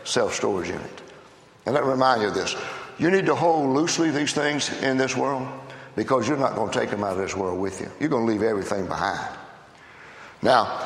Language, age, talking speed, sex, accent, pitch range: English, 60-79, 215 wpm, male, American, 115-170 Hz